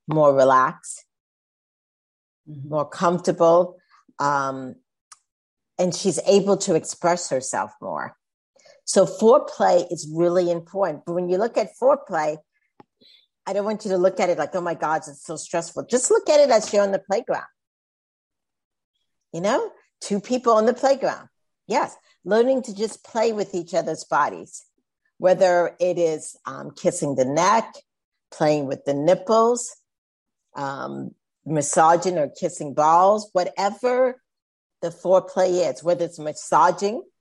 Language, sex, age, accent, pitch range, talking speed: English, female, 50-69, American, 155-210 Hz, 140 wpm